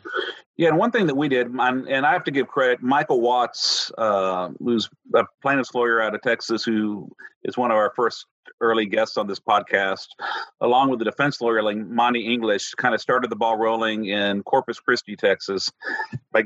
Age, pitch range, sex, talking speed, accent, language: 40-59, 105-135 Hz, male, 195 wpm, American, English